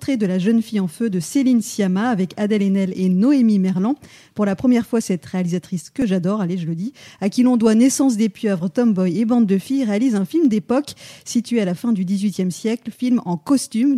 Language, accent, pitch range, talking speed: French, French, 190-240 Hz, 230 wpm